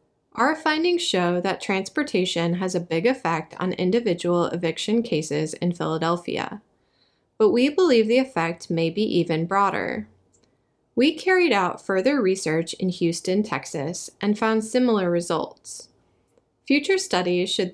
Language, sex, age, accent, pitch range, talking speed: English, female, 20-39, American, 170-240 Hz, 130 wpm